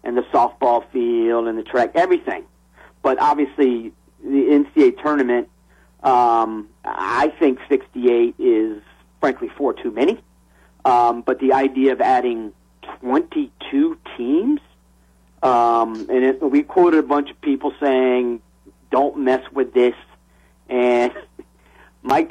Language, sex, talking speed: English, male, 125 wpm